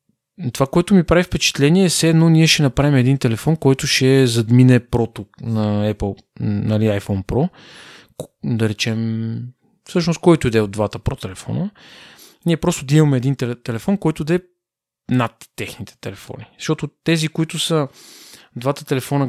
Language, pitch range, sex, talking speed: Bulgarian, 115-155 Hz, male, 145 wpm